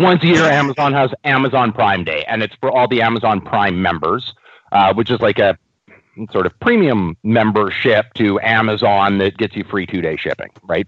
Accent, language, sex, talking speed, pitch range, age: American, English, male, 195 wpm, 100-145 Hz, 40-59